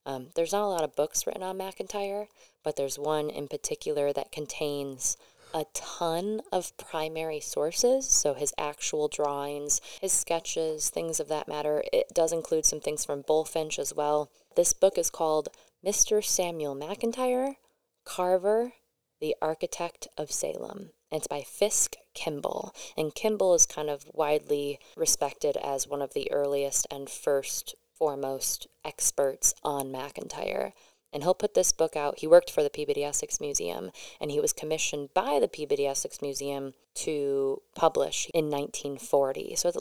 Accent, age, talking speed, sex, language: American, 20-39, 155 wpm, female, English